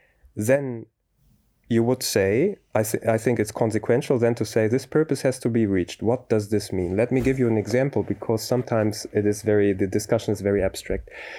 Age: 30-49